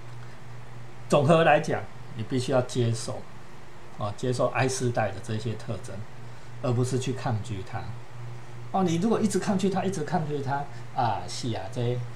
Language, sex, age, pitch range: Chinese, male, 50-69, 115-125 Hz